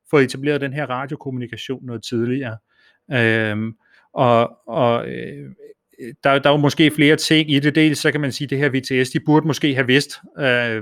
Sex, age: male, 30-49